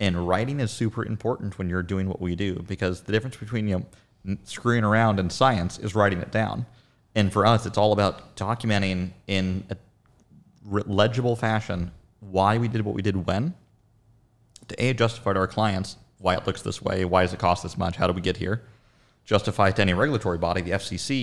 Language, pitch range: English, 95-110 Hz